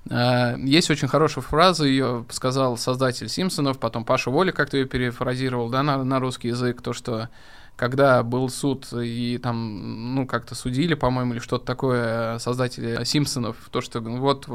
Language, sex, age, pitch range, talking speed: Russian, male, 20-39, 120-135 Hz, 160 wpm